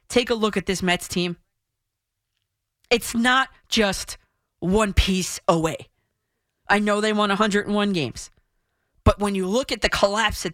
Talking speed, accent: 155 wpm, American